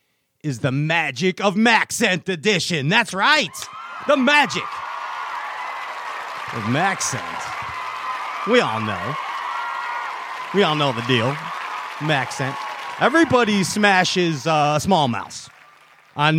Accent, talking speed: American, 105 wpm